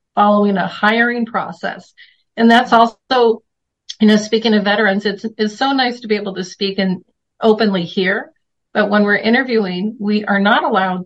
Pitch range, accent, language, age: 190-220 Hz, American, English, 40-59